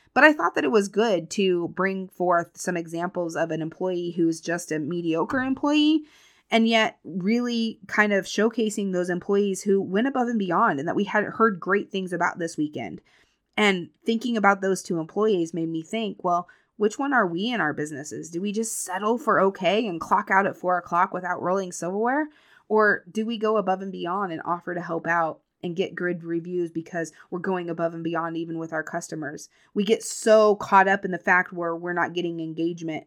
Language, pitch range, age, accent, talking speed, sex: English, 165-200 Hz, 20-39, American, 205 wpm, female